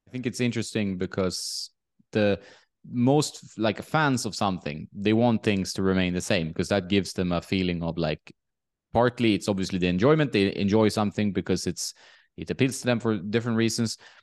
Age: 20-39